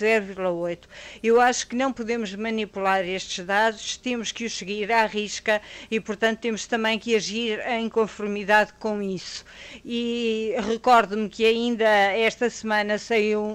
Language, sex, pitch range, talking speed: Portuguese, female, 210-235 Hz, 140 wpm